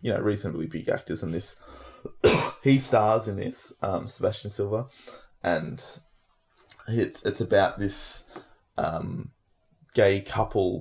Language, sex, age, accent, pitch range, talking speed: English, male, 20-39, Australian, 100-125 Hz, 120 wpm